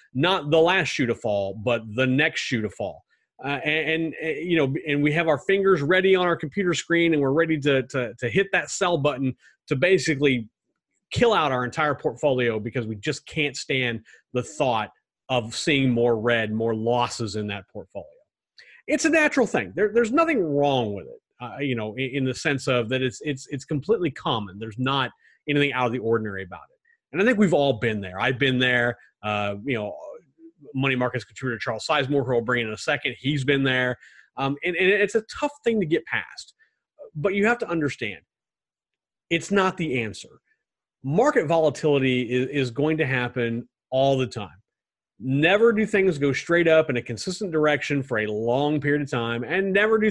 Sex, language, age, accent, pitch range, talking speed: male, English, 30-49, American, 120-170 Hz, 200 wpm